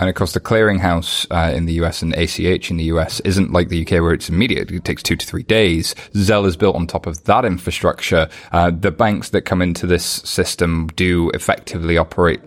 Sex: male